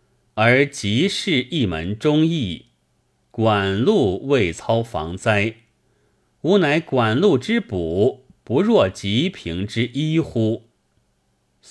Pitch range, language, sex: 90-140 Hz, Chinese, male